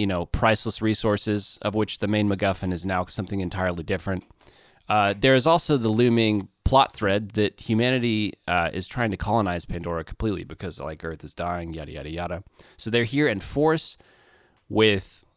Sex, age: male, 30-49